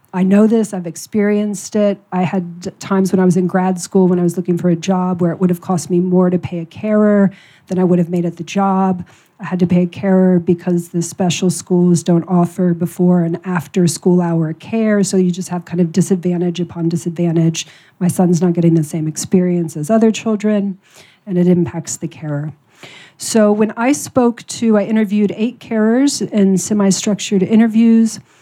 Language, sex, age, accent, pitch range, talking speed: English, female, 40-59, American, 175-200 Hz, 200 wpm